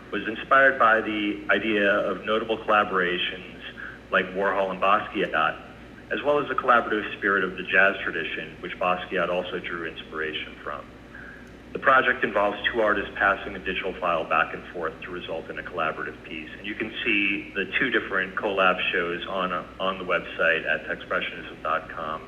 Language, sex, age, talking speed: English, male, 40-59, 165 wpm